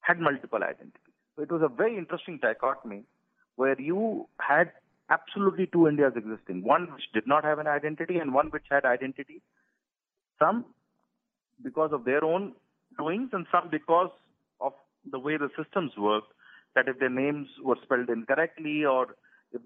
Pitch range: 120-160 Hz